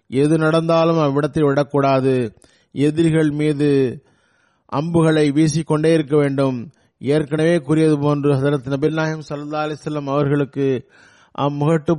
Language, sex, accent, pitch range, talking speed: Tamil, male, native, 135-160 Hz, 90 wpm